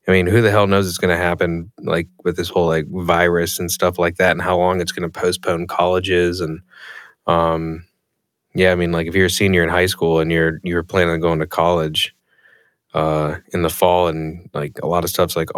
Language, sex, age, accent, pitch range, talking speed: English, male, 20-39, American, 85-100 Hz, 225 wpm